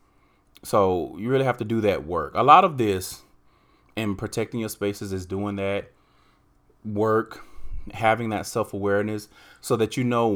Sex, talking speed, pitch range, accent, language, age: male, 155 wpm, 95-115 Hz, American, English, 30-49